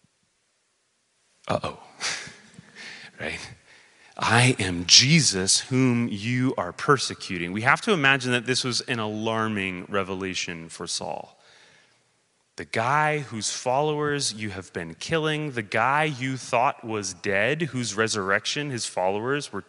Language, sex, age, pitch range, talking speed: English, male, 30-49, 100-140 Hz, 125 wpm